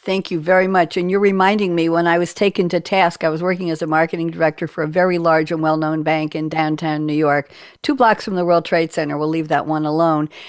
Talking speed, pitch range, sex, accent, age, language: 250 wpm, 160-200 Hz, female, American, 60-79, English